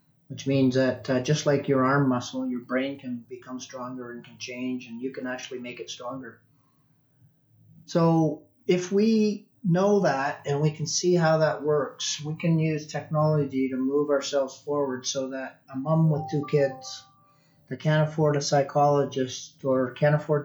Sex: male